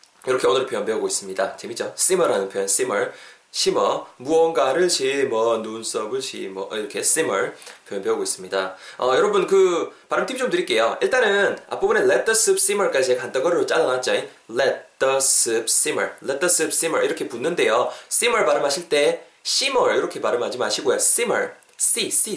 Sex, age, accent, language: male, 20-39, native, Korean